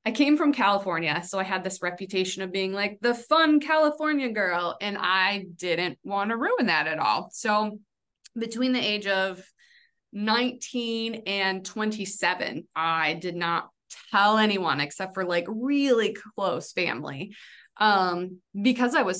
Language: English